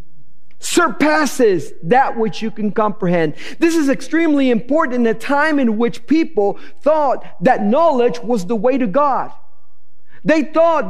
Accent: American